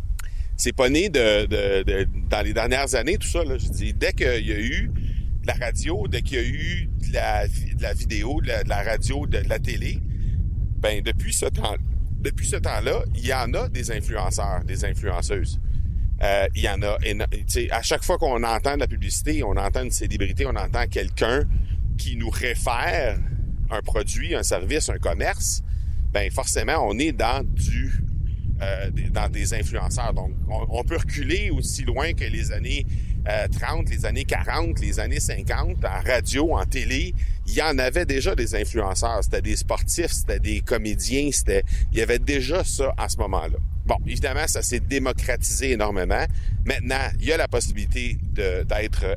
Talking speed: 180 wpm